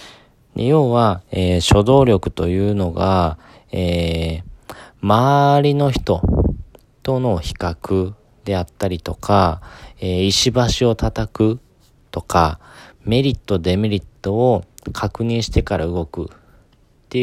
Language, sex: Japanese, male